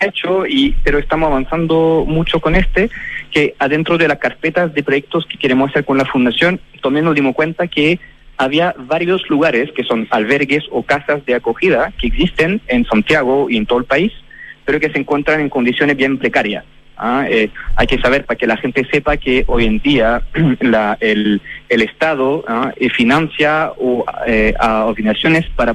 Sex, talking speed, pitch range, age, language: male, 185 wpm, 130-160 Hz, 30-49, Spanish